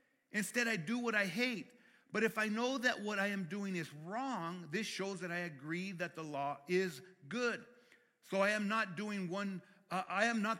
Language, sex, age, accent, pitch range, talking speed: English, male, 50-69, American, 175-220 Hz, 210 wpm